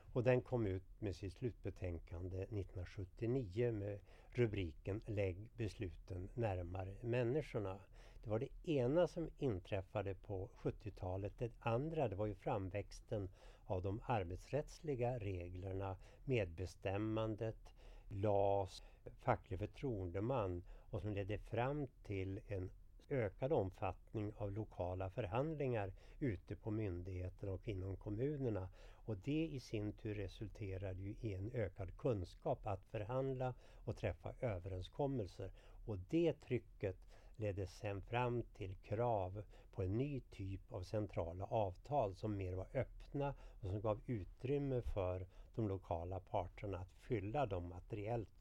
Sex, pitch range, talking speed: male, 95-120 Hz, 125 wpm